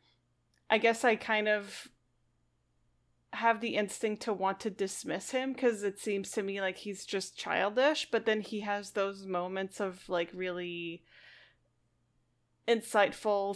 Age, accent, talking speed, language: 20-39, American, 140 wpm, English